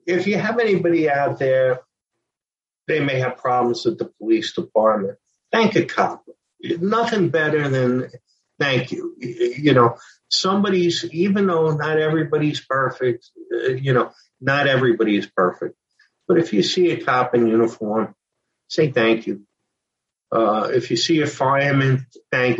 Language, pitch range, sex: English, 125-170 Hz, male